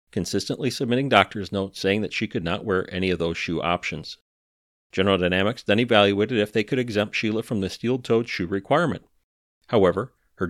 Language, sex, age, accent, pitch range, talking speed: English, male, 40-59, American, 95-125 Hz, 175 wpm